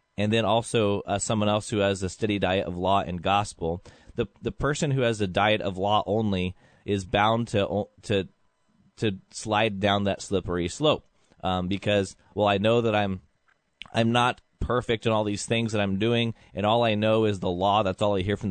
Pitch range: 95-110 Hz